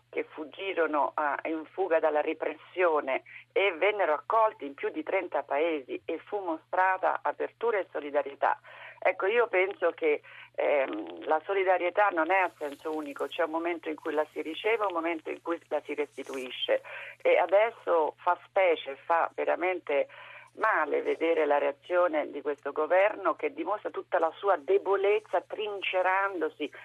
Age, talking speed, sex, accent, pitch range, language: 50-69, 150 wpm, female, native, 160-205 Hz, Italian